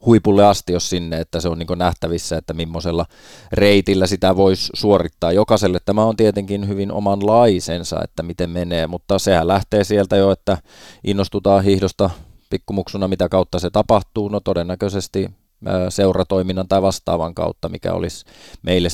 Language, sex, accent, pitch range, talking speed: Finnish, male, native, 85-95 Hz, 150 wpm